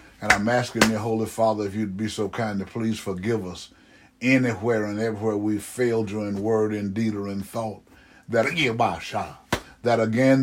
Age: 60-79